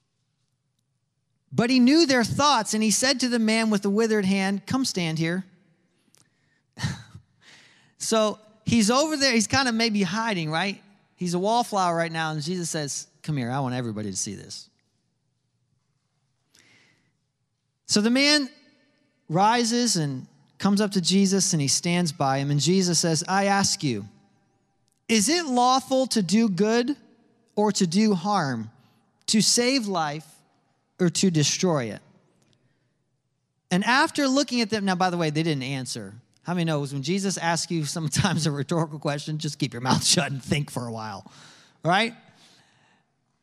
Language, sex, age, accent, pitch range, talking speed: English, male, 40-59, American, 140-215 Hz, 160 wpm